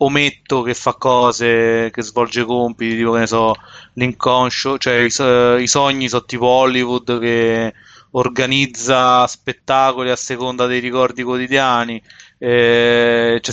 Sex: male